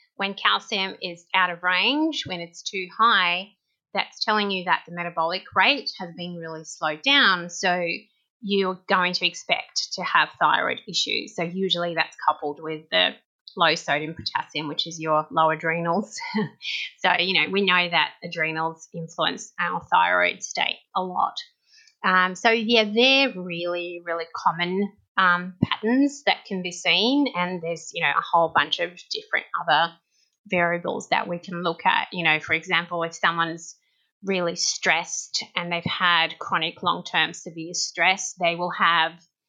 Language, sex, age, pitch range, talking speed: English, female, 30-49, 165-190 Hz, 160 wpm